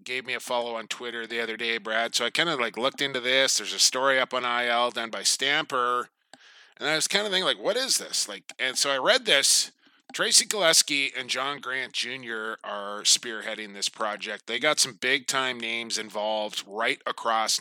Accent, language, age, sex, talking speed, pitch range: American, English, 20-39, male, 210 wpm, 120-160 Hz